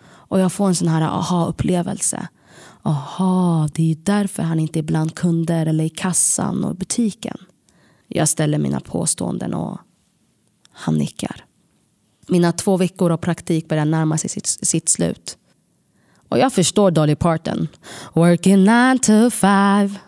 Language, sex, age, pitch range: Swedish, female, 30-49, 165-205 Hz